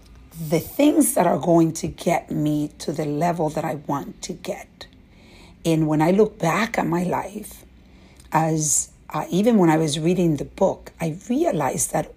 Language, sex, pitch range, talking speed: English, female, 150-190 Hz, 175 wpm